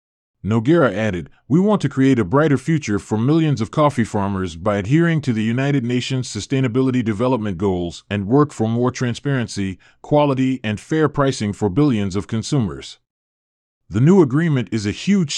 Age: 40-59